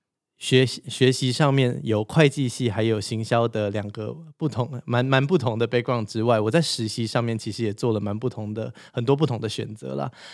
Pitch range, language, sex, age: 110-135 Hz, Chinese, male, 20-39